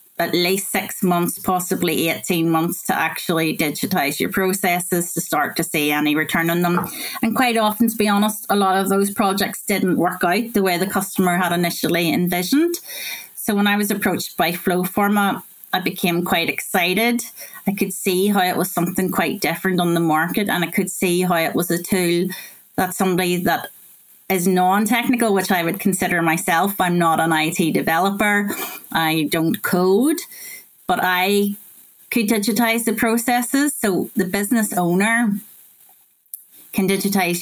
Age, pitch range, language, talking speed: 30-49, 175-205 Hz, English, 165 wpm